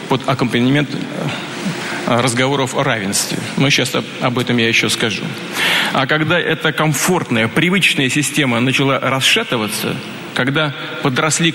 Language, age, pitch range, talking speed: Russian, 40-59, 125-155 Hz, 115 wpm